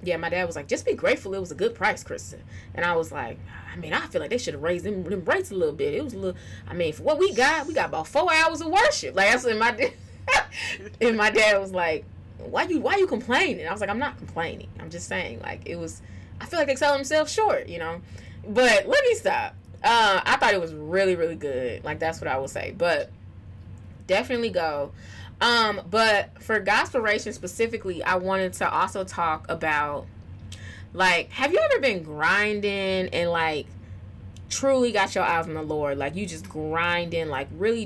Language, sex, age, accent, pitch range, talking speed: English, female, 20-39, American, 145-215 Hz, 220 wpm